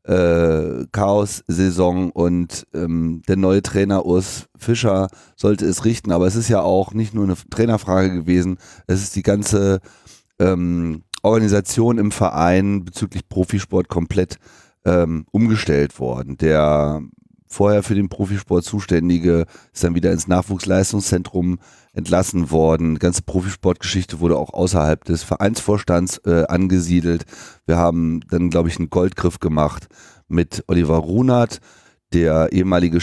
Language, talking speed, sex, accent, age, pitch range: German, 130 wpm, male, German, 30-49, 85-100 Hz